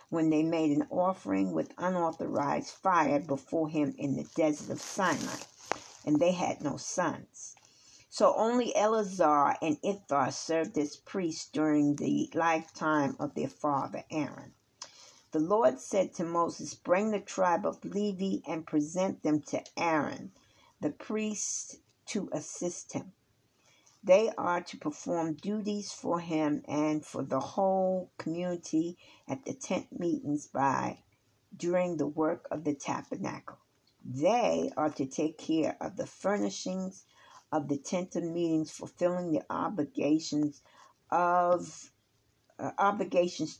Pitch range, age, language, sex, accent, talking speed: 150-190 Hz, 50-69, English, female, American, 135 wpm